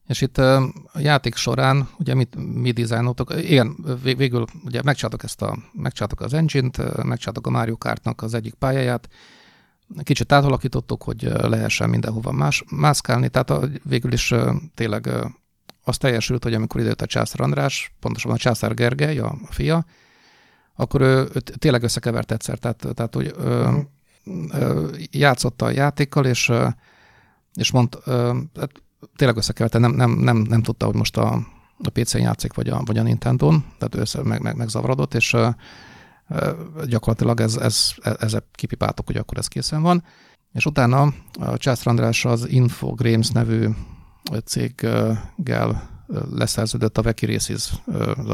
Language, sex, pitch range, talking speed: Hungarian, male, 115-140 Hz, 140 wpm